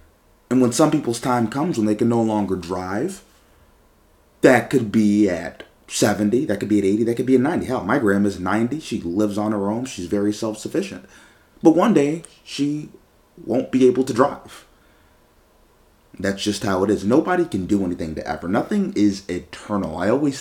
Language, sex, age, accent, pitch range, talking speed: English, male, 30-49, American, 95-120 Hz, 190 wpm